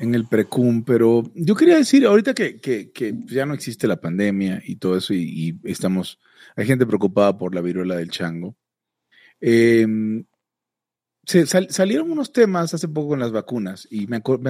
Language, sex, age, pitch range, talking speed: Spanish, male, 30-49, 110-160 Hz, 185 wpm